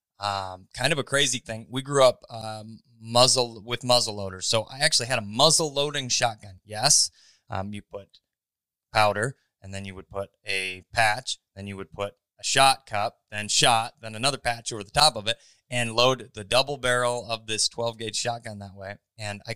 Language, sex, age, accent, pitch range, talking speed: English, male, 20-39, American, 110-135 Hz, 200 wpm